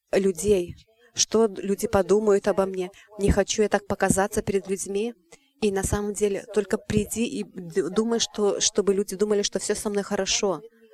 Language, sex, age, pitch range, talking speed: English, female, 30-49, 200-225 Hz, 165 wpm